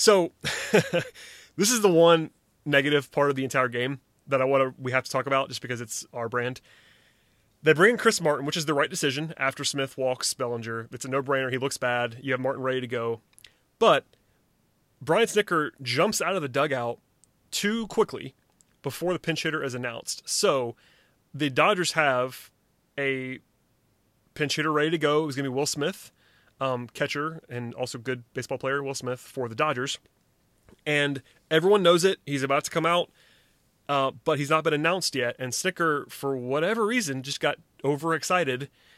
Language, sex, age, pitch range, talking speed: English, male, 30-49, 130-160 Hz, 180 wpm